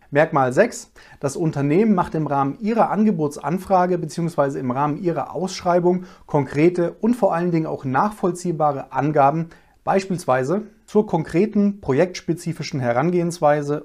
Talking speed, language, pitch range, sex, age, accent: 115 wpm, German, 145-195 Hz, male, 40-59, German